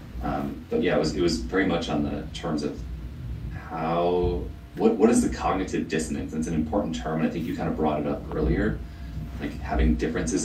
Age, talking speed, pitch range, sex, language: 30-49, 210 wpm, 75-80 Hz, male, English